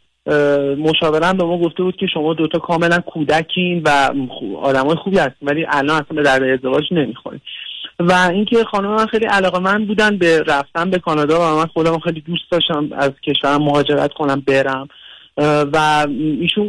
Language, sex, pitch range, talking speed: Persian, male, 145-175 Hz, 170 wpm